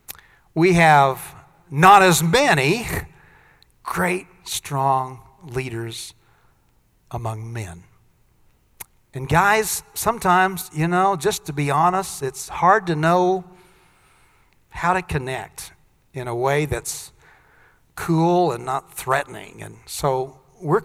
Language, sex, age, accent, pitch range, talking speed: English, male, 50-69, American, 130-175 Hz, 105 wpm